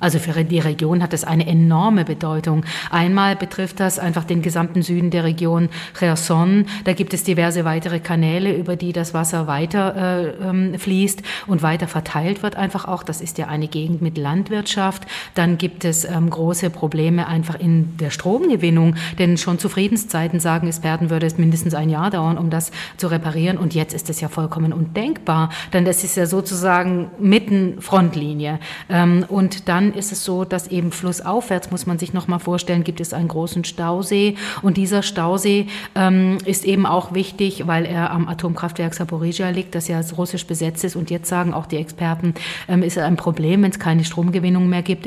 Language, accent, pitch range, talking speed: German, German, 165-185 Hz, 190 wpm